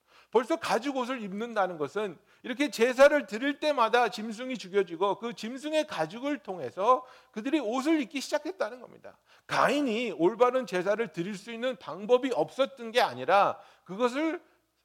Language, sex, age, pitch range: Korean, male, 60-79, 190-285 Hz